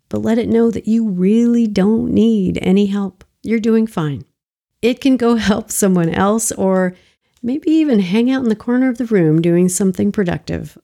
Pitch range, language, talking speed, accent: 180-225 Hz, English, 190 wpm, American